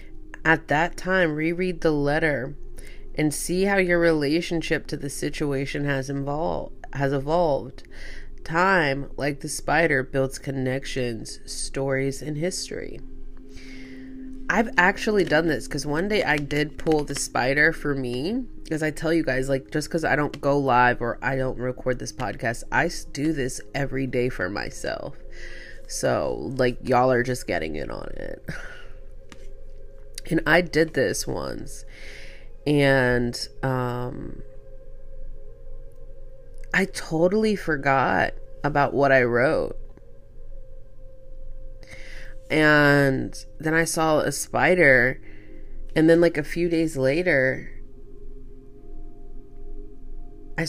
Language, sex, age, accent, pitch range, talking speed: English, female, 20-39, American, 130-165 Hz, 120 wpm